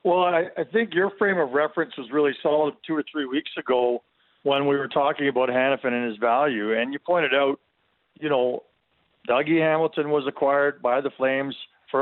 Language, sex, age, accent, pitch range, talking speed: English, male, 50-69, American, 120-150 Hz, 195 wpm